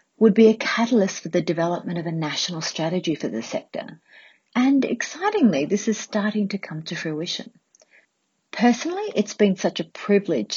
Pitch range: 155-220 Hz